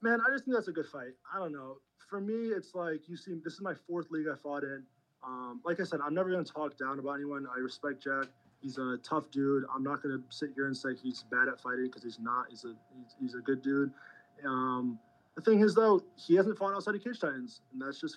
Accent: American